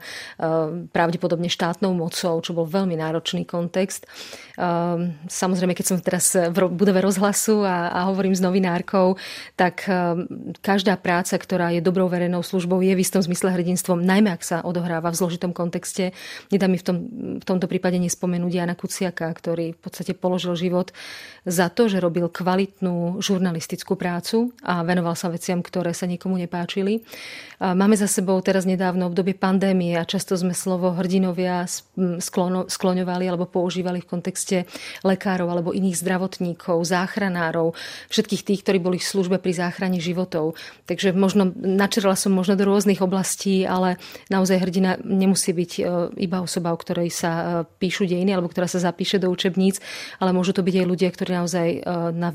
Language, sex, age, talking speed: Czech, female, 30-49, 155 wpm